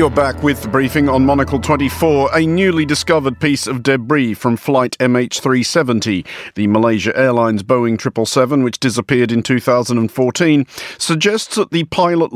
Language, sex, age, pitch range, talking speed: English, male, 50-69, 115-155 Hz, 145 wpm